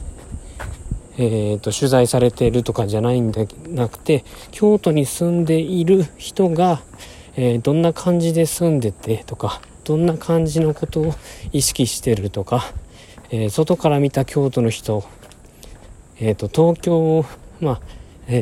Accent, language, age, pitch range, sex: native, Japanese, 40-59, 95-130 Hz, male